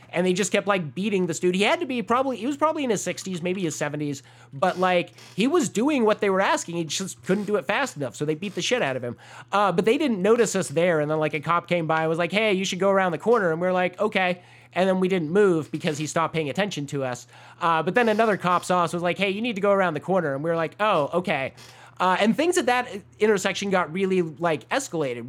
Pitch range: 155-195 Hz